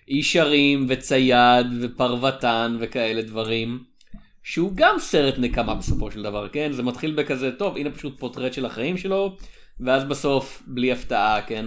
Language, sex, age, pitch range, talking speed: Hebrew, male, 30-49, 125-170 Hz, 145 wpm